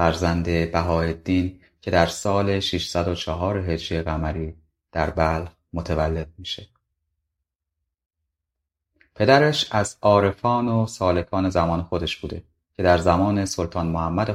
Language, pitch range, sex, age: Persian, 85-95 Hz, male, 30-49